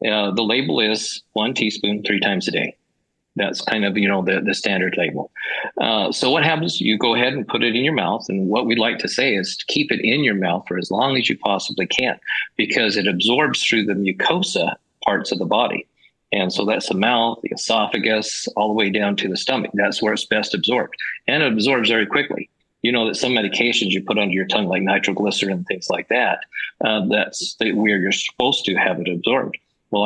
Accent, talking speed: American, 225 wpm